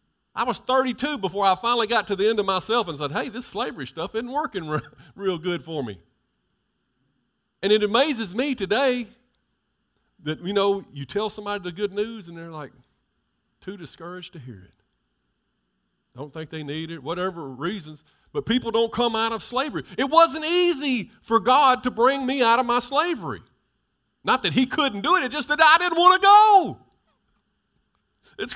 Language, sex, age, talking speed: English, male, 50-69, 185 wpm